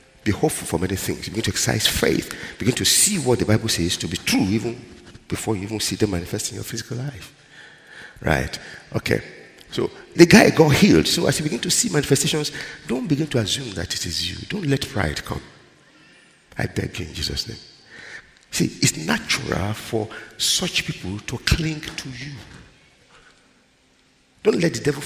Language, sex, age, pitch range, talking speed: English, male, 50-69, 90-130 Hz, 180 wpm